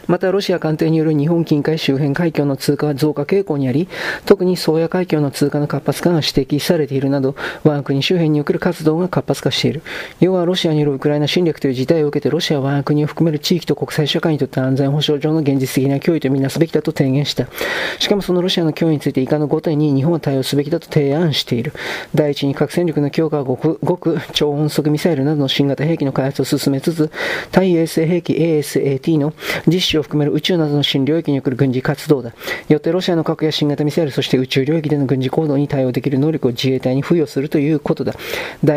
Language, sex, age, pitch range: Japanese, male, 40-59, 140-165 Hz